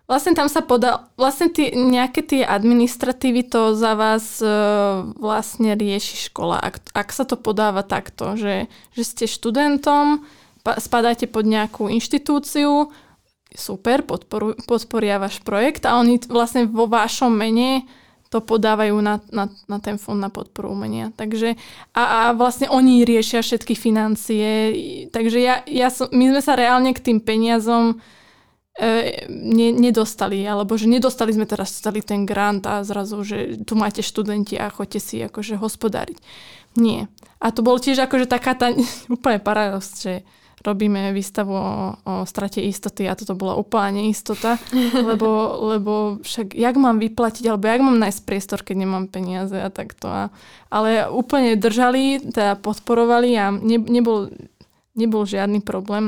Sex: female